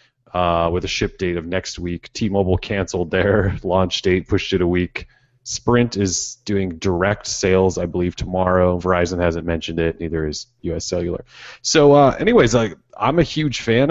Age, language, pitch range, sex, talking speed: 30-49, English, 85-110 Hz, male, 175 wpm